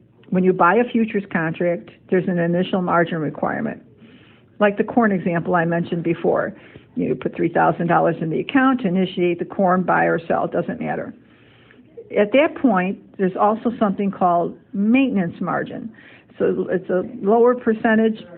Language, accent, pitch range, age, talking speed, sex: English, American, 180-220 Hz, 50-69, 155 wpm, female